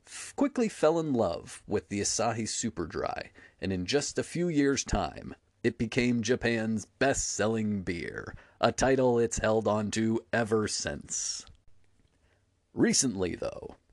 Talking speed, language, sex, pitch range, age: 130 wpm, English, male, 105-155 Hz, 30-49